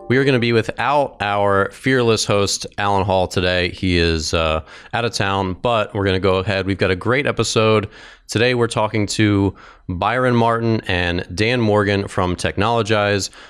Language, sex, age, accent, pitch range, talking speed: English, male, 30-49, American, 90-110 Hz, 180 wpm